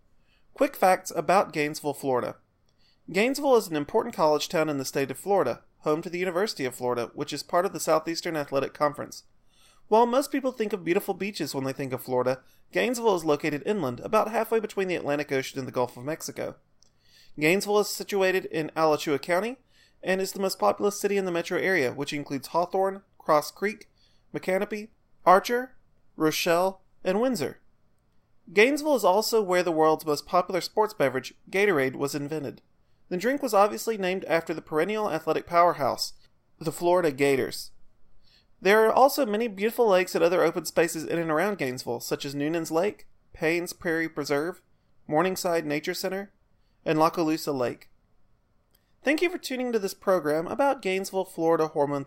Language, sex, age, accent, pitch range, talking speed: English, male, 30-49, American, 140-195 Hz, 170 wpm